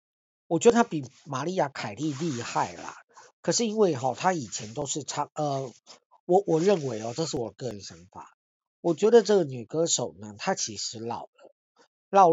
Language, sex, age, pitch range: Chinese, male, 50-69, 120-185 Hz